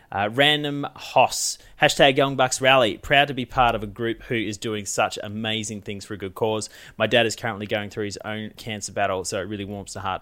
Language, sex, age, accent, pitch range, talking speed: English, male, 30-49, Australian, 100-125 Hz, 235 wpm